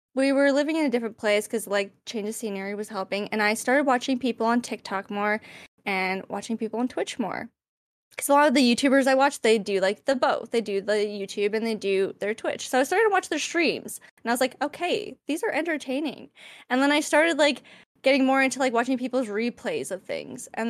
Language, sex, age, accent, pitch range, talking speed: English, female, 20-39, American, 220-290 Hz, 230 wpm